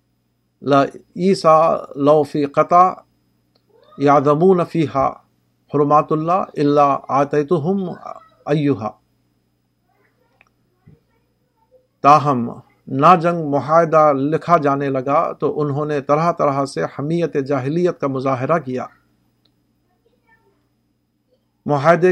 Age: 50-69